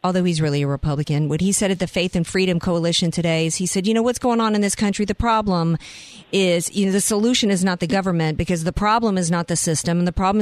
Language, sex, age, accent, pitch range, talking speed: English, female, 40-59, American, 160-200 Hz, 270 wpm